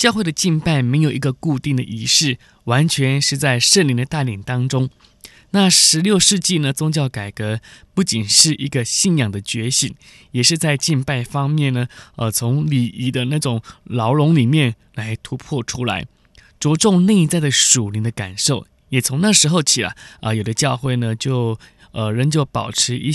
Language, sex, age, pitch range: Chinese, male, 20-39, 115-150 Hz